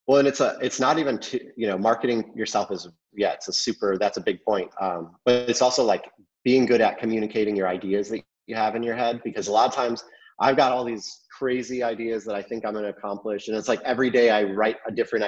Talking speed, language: 255 wpm, English